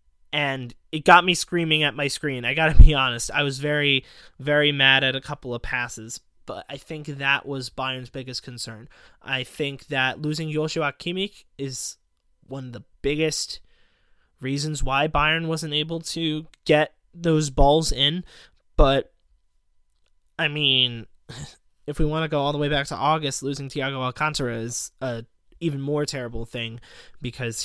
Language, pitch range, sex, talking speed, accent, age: English, 120-155 Hz, male, 165 wpm, American, 20-39